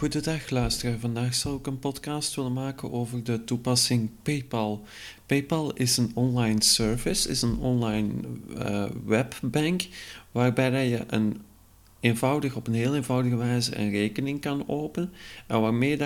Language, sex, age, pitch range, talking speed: Dutch, male, 40-59, 110-140 Hz, 135 wpm